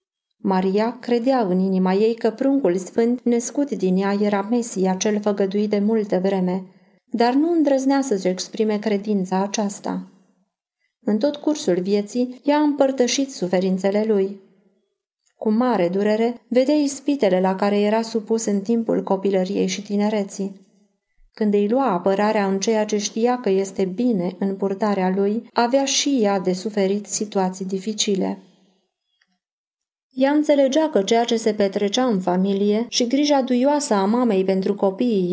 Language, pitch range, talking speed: Romanian, 195-245 Hz, 145 wpm